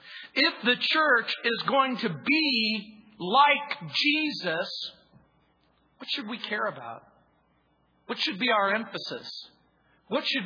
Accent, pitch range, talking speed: American, 195-280 Hz, 120 wpm